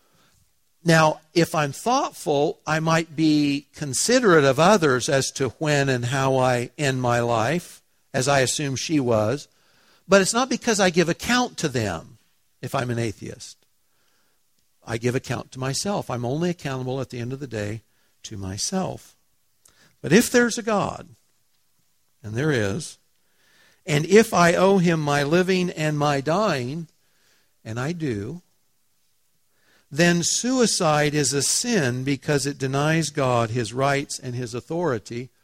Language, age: English, 60-79